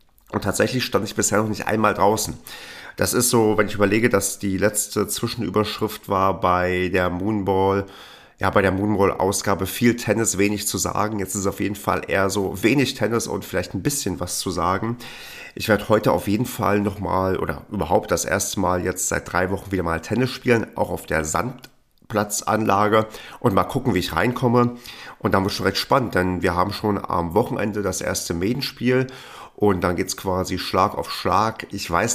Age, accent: 40-59, German